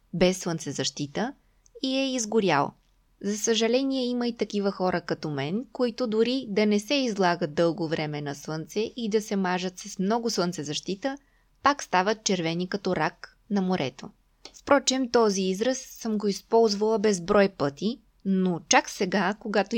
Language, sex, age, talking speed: Bulgarian, female, 20-39, 150 wpm